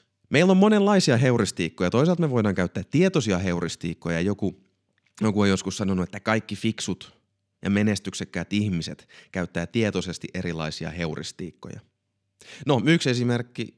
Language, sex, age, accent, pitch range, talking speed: Finnish, male, 30-49, native, 95-120 Hz, 120 wpm